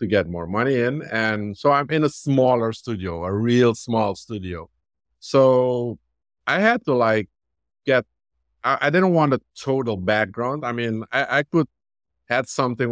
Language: English